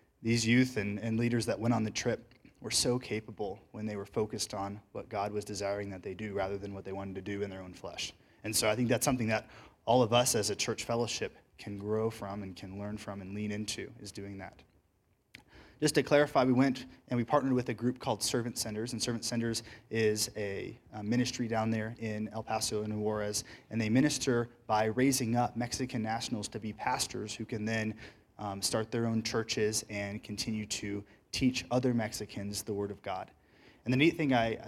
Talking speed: 215 wpm